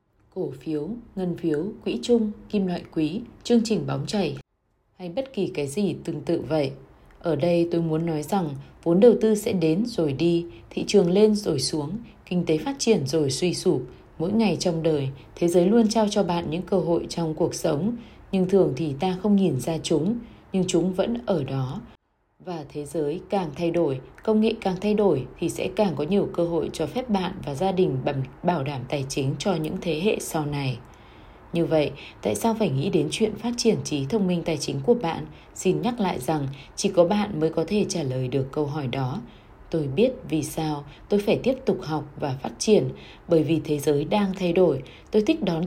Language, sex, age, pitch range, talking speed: Vietnamese, female, 20-39, 150-200 Hz, 215 wpm